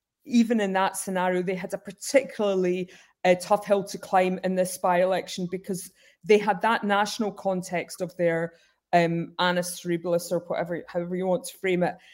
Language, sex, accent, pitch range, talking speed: English, female, British, 175-200 Hz, 175 wpm